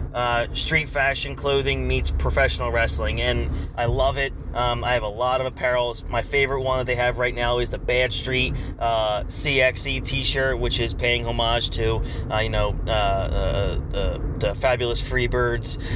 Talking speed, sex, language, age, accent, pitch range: 175 wpm, male, English, 30-49, American, 115-130 Hz